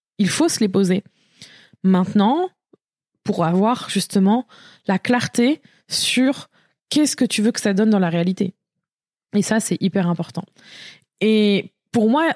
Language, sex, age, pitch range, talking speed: French, female, 20-39, 195-230 Hz, 145 wpm